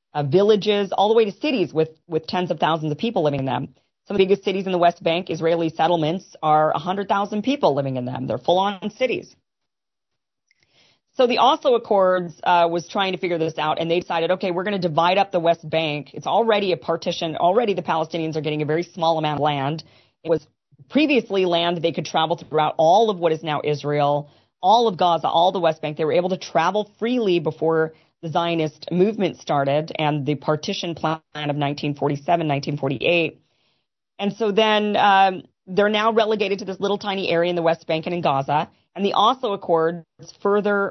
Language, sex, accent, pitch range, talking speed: English, female, American, 155-195 Hz, 200 wpm